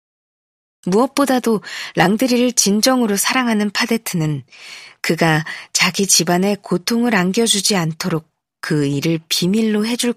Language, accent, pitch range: Korean, native, 170-230 Hz